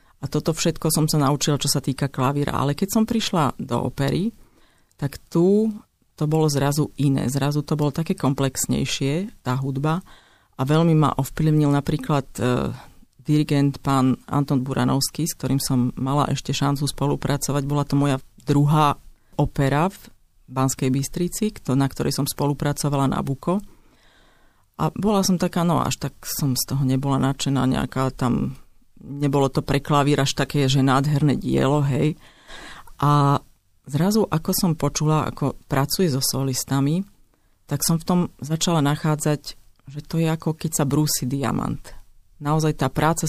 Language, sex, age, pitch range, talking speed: Slovak, female, 40-59, 135-155 Hz, 150 wpm